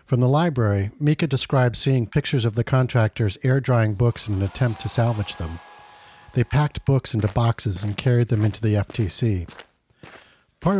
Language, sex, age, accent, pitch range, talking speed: English, male, 50-69, American, 110-130 Hz, 165 wpm